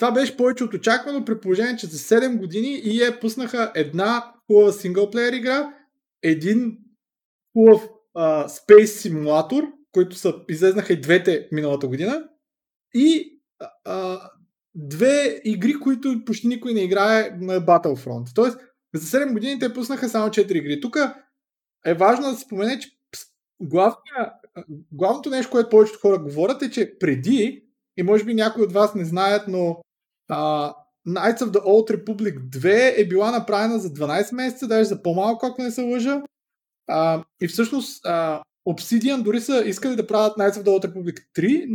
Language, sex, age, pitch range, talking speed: Bulgarian, male, 20-39, 185-250 Hz, 155 wpm